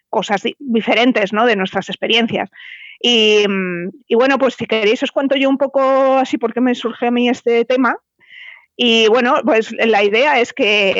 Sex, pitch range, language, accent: female, 200-245 Hz, Spanish, Spanish